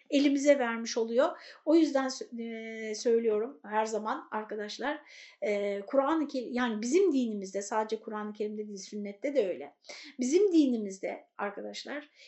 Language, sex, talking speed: Turkish, female, 125 wpm